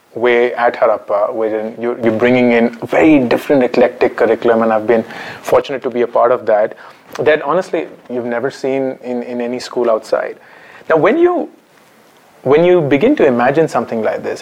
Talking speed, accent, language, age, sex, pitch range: 175 wpm, Indian, English, 30-49, male, 115-130 Hz